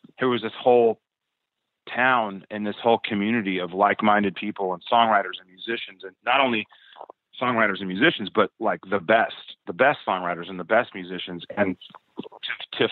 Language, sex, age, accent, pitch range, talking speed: English, male, 30-49, American, 100-120 Hz, 165 wpm